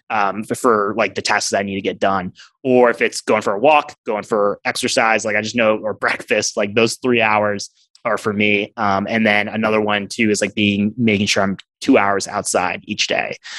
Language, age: English, 20-39